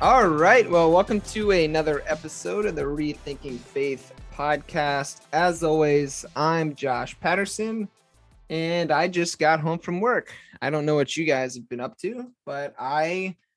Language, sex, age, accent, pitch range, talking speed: English, male, 20-39, American, 140-175 Hz, 160 wpm